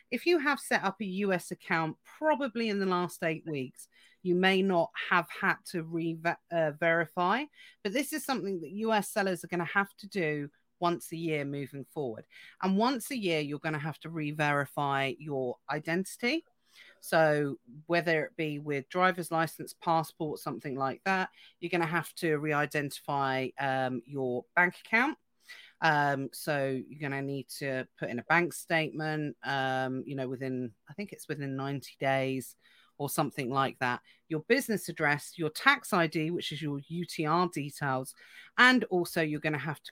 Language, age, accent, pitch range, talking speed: English, 40-59, British, 145-195 Hz, 175 wpm